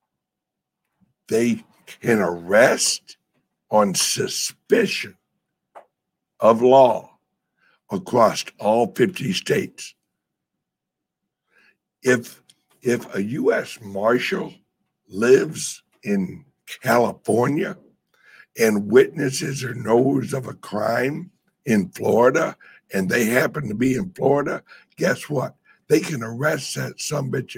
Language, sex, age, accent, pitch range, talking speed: English, male, 60-79, American, 115-190 Hz, 90 wpm